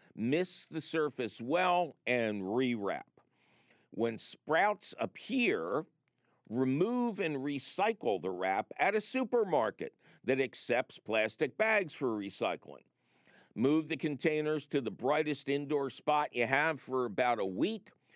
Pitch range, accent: 125-175 Hz, American